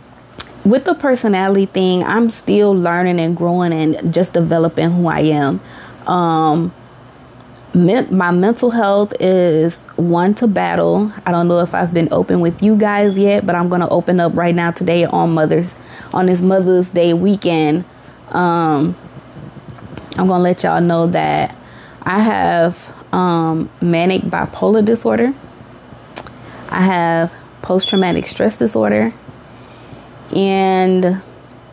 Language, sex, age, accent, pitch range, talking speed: English, female, 20-39, American, 160-190 Hz, 135 wpm